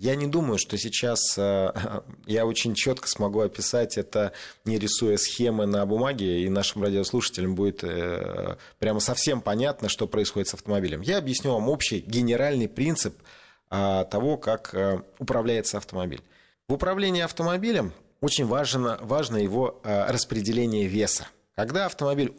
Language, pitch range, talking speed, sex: Russian, 95-120 Hz, 130 wpm, male